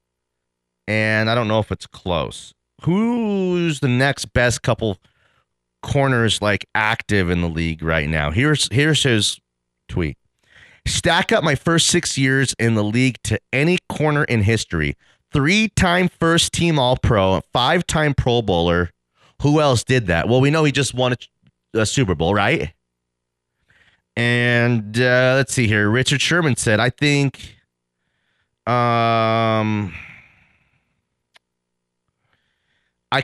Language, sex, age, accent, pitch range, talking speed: English, male, 30-49, American, 85-130 Hz, 130 wpm